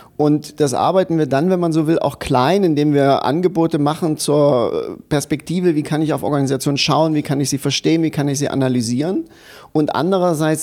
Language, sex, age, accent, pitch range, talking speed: German, male, 40-59, German, 140-170 Hz, 200 wpm